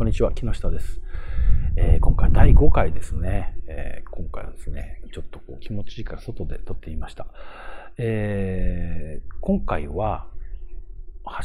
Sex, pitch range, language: male, 80-130 Hz, Japanese